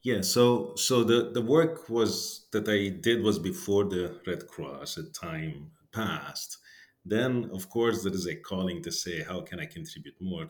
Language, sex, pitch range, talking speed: English, male, 95-120 Hz, 190 wpm